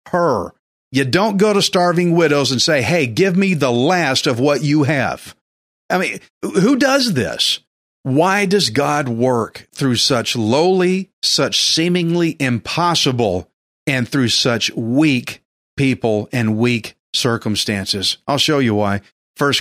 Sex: male